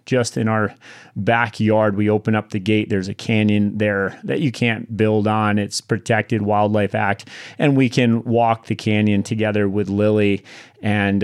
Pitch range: 105-125 Hz